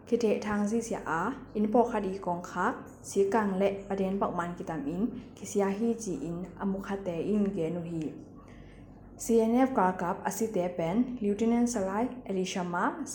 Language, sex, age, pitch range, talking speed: English, female, 10-29, 185-220 Hz, 50 wpm